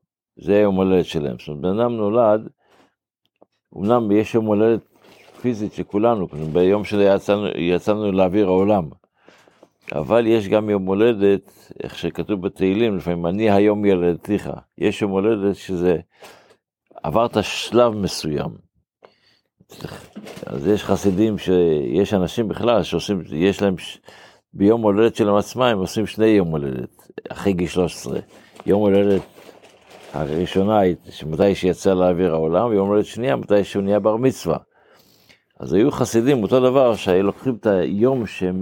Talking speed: 140 wpm